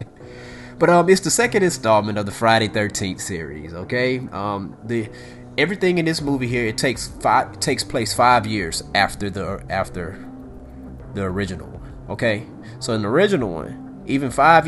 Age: 30-49